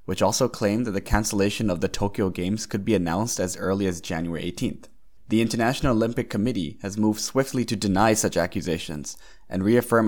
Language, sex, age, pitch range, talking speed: English, male, 20-39, 95-115 Hz, 185 wpm